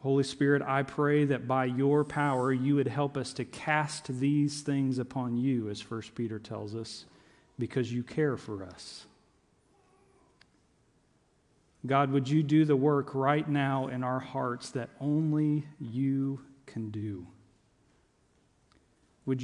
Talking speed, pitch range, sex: 140 wpm, 115-140 Hz, male